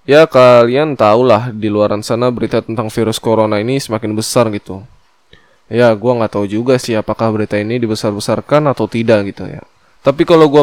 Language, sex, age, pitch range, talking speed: Indonesian, male, 10-29, 110-140 Hz, 175 wpm